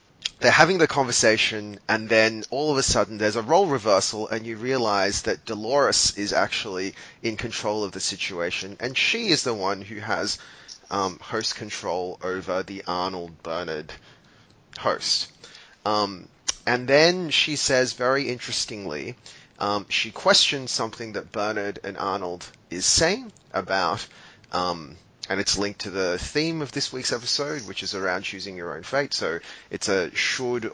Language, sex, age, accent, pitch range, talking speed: English, male, 30-49, Australian, 95-125 Hz, 155 wpm